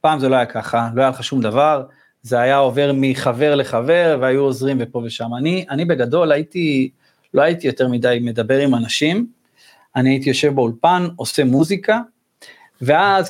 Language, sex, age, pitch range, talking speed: Hebrew, male, 30-49, 125-165 Hz, 165 wpm